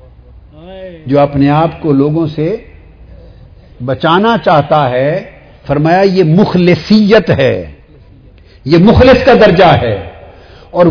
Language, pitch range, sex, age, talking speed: Urdu, 135-205 Hz, male, 50-69, 105 wpm